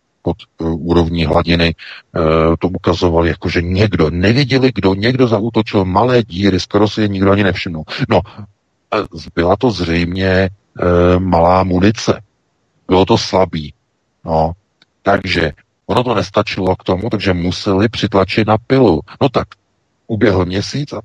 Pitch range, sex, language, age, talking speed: 90-110 Hz, male, Czech, 50-69, 125 wpm